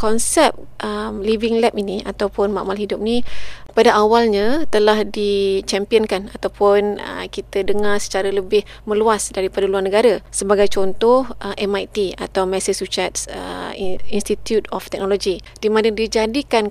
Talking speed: 125 wpm